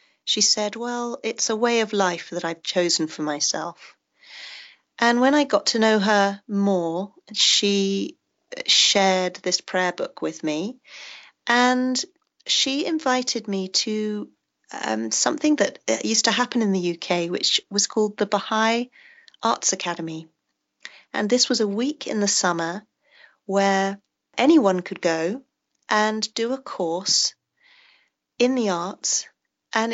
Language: English